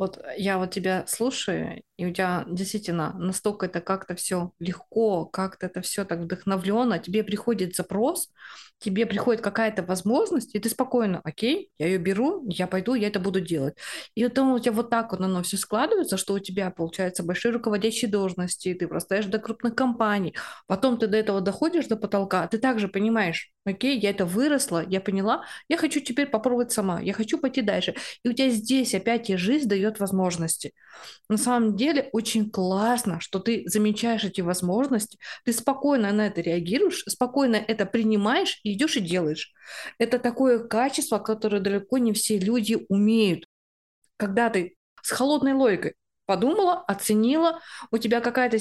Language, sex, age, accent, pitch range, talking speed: Russian, female, 20-39, native, 190-245 Hz, 170 wpm